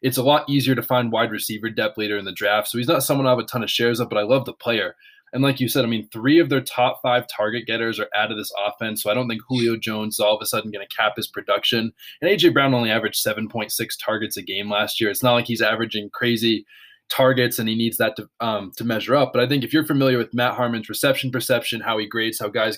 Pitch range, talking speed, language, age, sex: 110-135 Hz, 280 wpm, English, 20-39, male